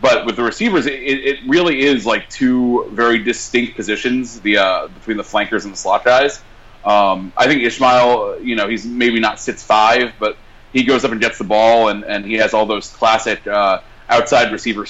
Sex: male